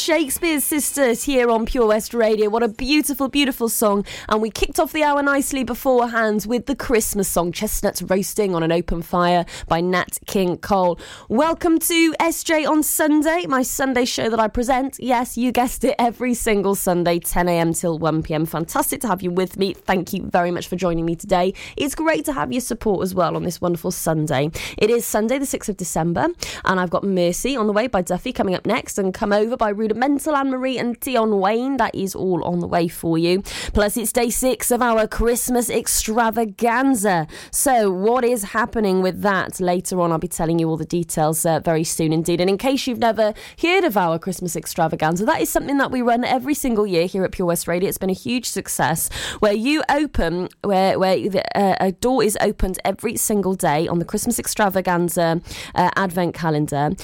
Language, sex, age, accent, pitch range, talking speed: English, female, 20-39, British, 180-245 Hz, 205 wpm